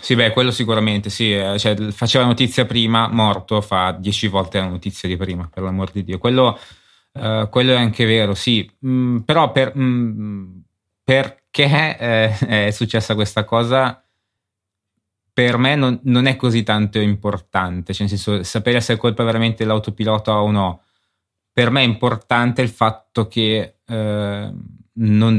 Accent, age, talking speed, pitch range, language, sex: native, 20-39, 155 wpm, 100-115 Hz, Italian, male